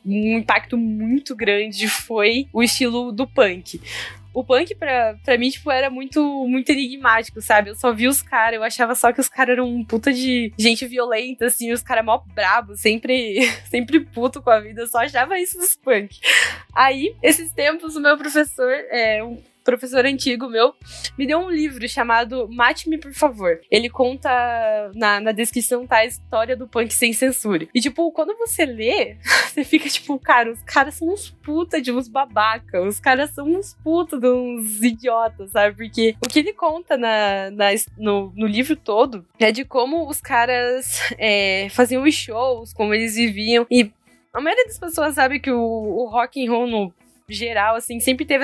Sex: female